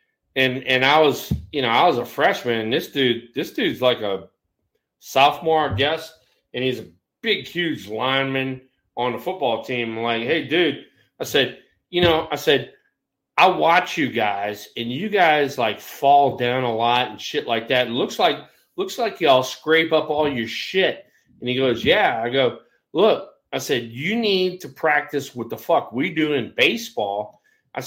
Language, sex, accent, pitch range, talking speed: English, male, American, 130-165 Hz, 190 wpm